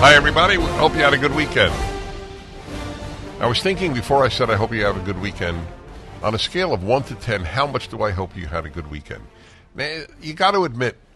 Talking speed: 225 wpm